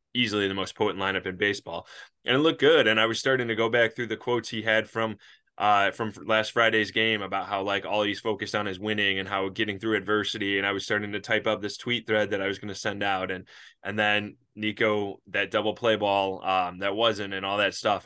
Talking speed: 250 wpm